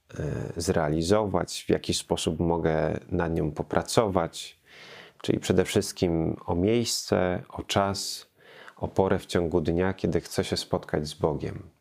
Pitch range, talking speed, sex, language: 85-105 Hz, 130 wpm, male, Polish